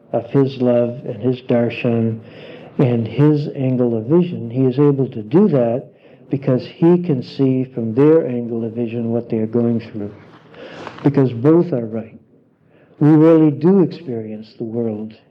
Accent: American